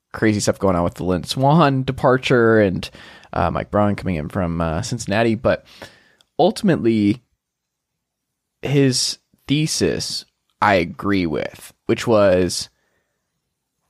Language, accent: English, American